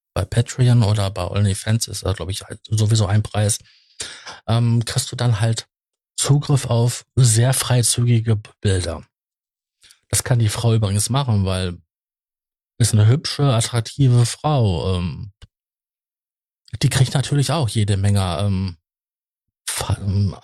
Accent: German